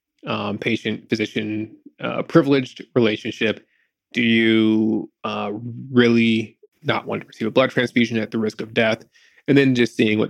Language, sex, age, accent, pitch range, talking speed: English, male, 20-39, American, 110-135 Hz, 150 wpm